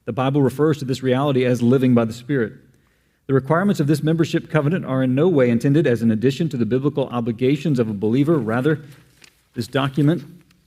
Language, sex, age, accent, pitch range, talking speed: English, male, 40-59, American, 120-150 Hz, 195 wpm